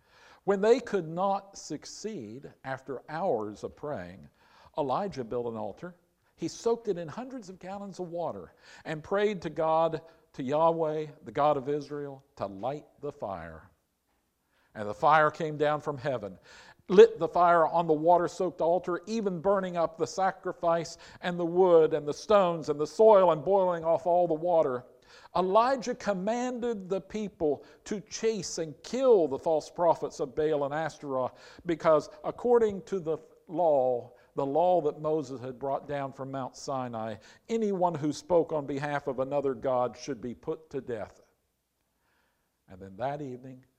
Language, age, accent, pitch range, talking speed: English, 50-69, American, 135-180 Hz, 160 wpm